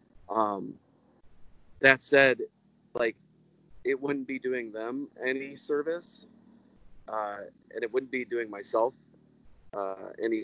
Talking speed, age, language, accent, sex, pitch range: 115 wpm, 30-49, English, American, male, 105-125 Hz